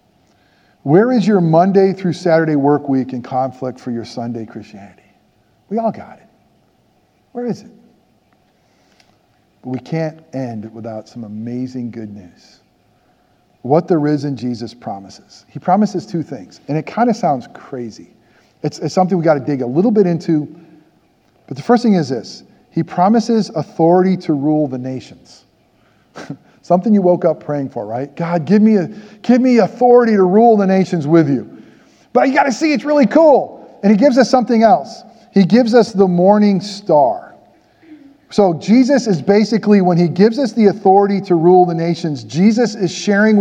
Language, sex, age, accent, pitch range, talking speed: English, male, 50-69, American, 155-200 Hz, 175 wpm